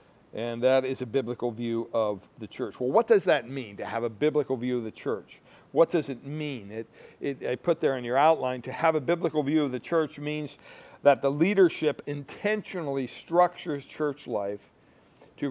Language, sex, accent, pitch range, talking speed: English, male, American, 125-160 Hz, 190 wpm